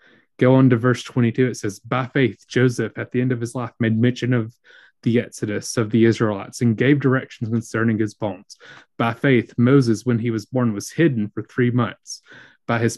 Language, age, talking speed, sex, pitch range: English, 20-39, 205 wpm, male, 115-140 Hz